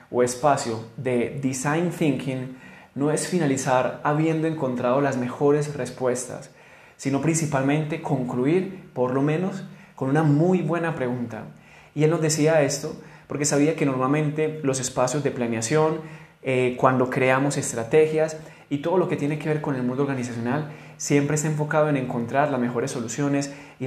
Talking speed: 155 wpm